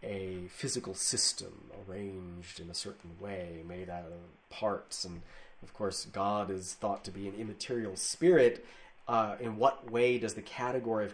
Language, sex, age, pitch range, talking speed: English, male, 30-49, 105-145 Hz, 165 wpm